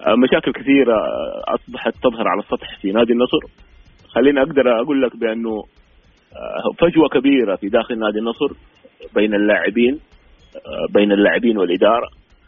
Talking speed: 120 wpm